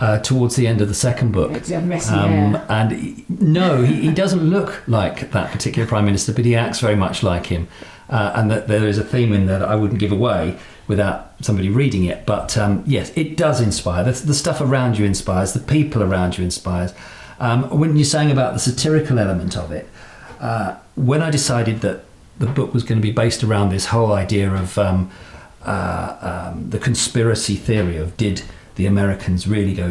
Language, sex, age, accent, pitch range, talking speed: English, male, 40-59, British, 95-125 Hz, 200 wpm